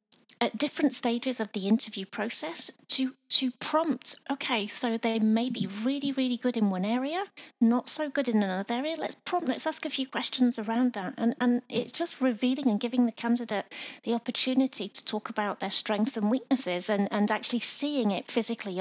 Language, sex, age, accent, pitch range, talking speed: English, female, 30-49, British, 205-255 Hz, 190 wpm